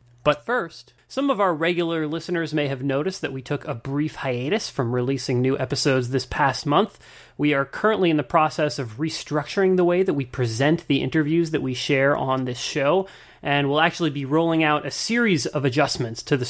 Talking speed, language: 205 wpm, English